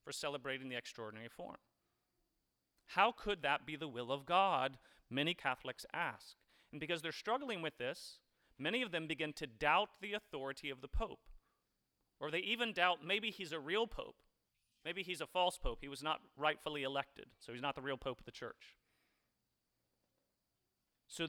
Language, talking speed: English, 175 wpm